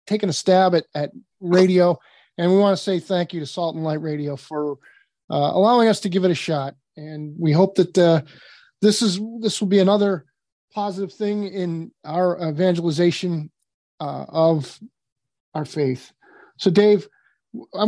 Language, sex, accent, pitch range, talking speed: English, male, American, 155-195 Hz, 170 wpm